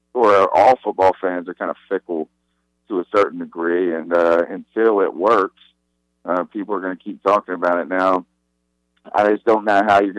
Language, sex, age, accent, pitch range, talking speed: English, male, 50-69, American, 85-100 Hz, 195 wpm